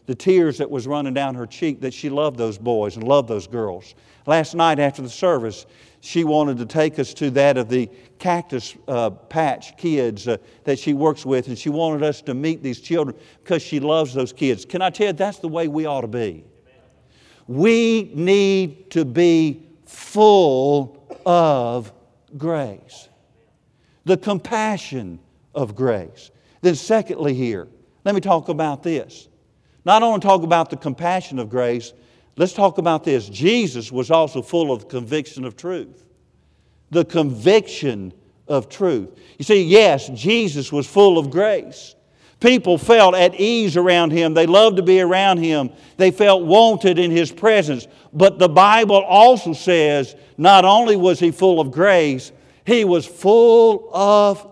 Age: 50-69